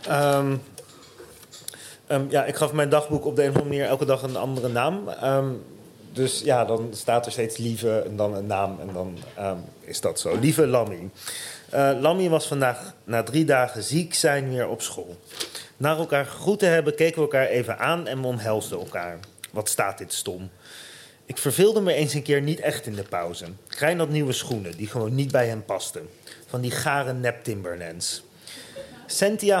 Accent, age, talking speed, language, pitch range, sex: Dutch, 30-49, 185 wpm, Dutch, 120-165 Hz, male